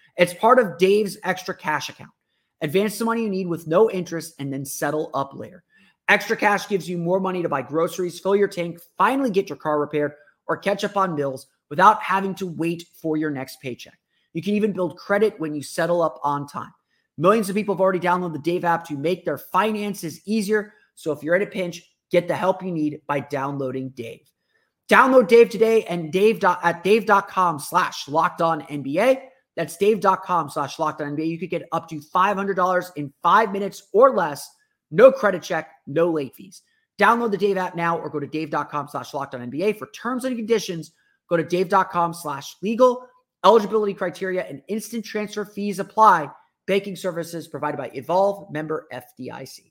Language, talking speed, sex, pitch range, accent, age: English, 185 wpm, male, 155-205 Hz, American, 30-49